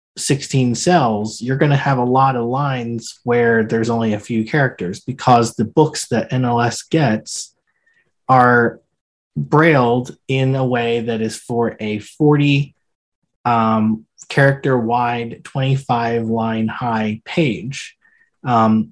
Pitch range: 115-135 Hz